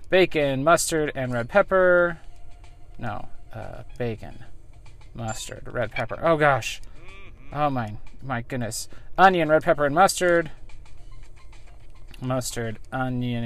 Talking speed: 105 wpm